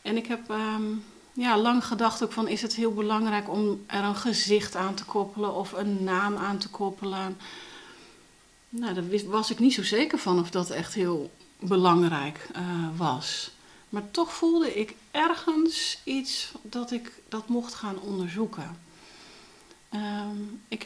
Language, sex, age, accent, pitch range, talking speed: Dutch, female, 40-59, Dutch, 175-220 Hz, 150 wpm